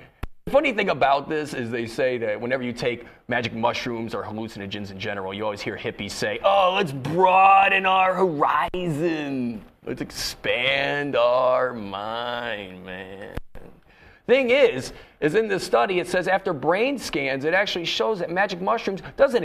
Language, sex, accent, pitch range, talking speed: English, male, American, 130-195 Hz, 155 wpm